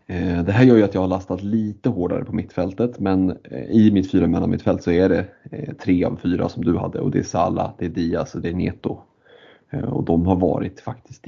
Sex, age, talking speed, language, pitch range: male, 30-49, 230 wpm, Swedish, 90-105 Hz